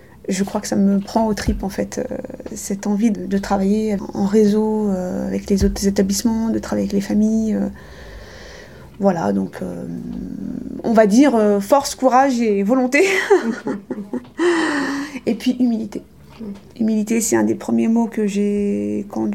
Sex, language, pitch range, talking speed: female, French, 185-230 Hz, 165 wpm